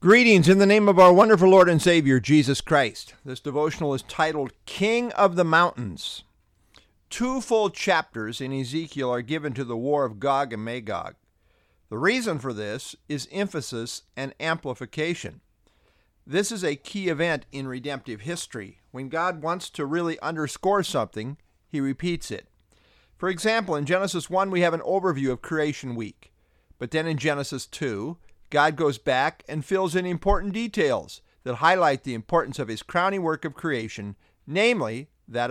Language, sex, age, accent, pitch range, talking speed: English, male, 50-69, American, 125-185 Hz, 165 wpm